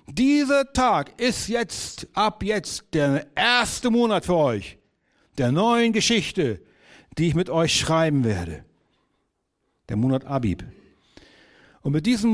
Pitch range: 115-165 Hz